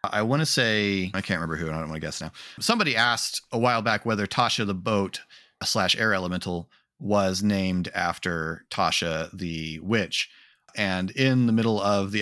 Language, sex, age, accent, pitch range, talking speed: English, male, 30-49, American, 90-110 Hz, 185 wpm